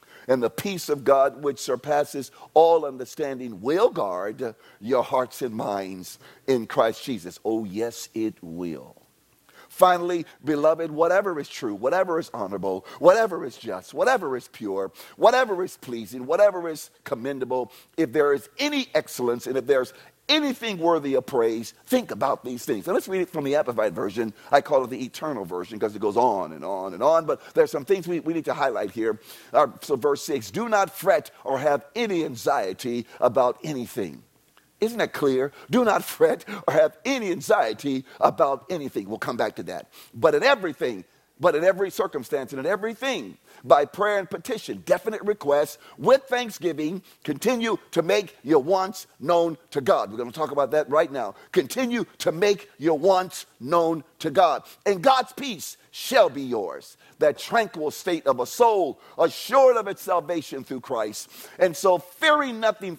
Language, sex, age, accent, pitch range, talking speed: English, male, 50-69, American, 135-210 Hz, 175 wpm